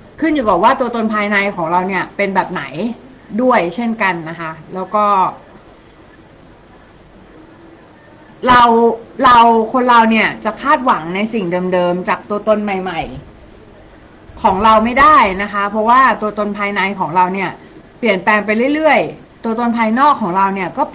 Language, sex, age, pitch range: Thai, female, 30-49, 185-245 Hz